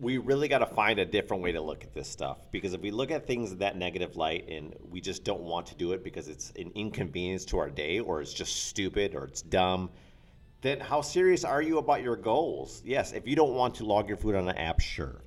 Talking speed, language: 260 wpm, English